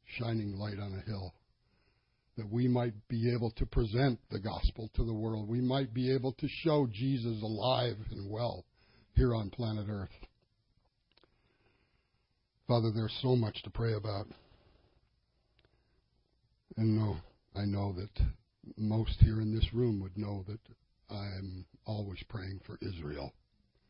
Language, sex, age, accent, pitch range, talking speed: English, male, 60-79, American, 100-120 Hz, 140 wpm